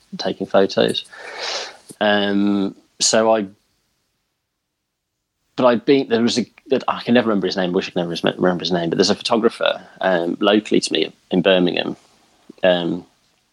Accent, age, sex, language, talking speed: British, 30-49, male, English, 160 wpm